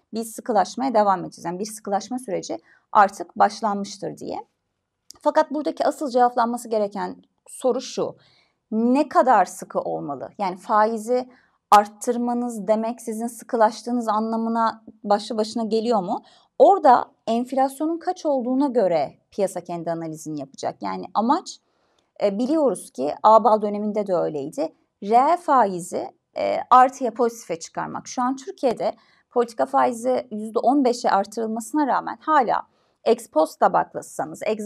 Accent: native